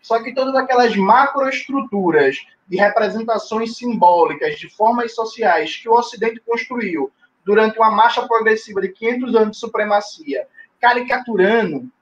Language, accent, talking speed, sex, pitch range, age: Portuguese, Brazilian, 125 wpm, male, 200-255 Hz, 20-39